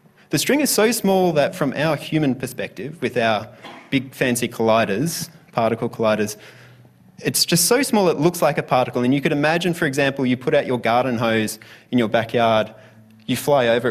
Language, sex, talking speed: English, male, 190 wpm